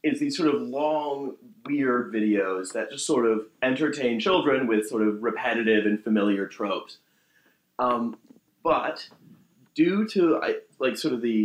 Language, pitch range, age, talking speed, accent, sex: English, 105-130 Hz, 30-49, 150 wpm, American, male